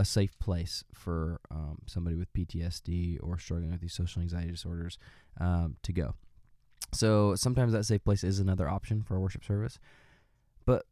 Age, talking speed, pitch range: 20-39, 170 wpm, 90-105 Hz